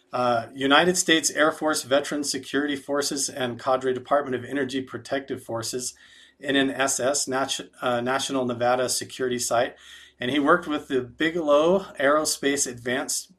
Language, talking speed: English, 145 wpm